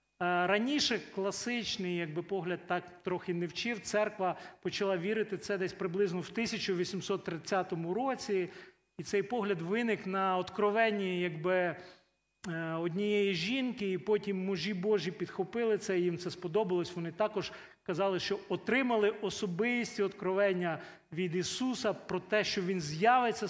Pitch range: 175-210 Hz